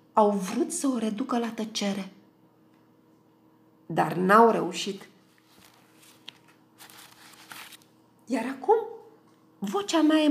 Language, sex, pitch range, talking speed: Romanian, female, 225-300 Hz, 85 wpm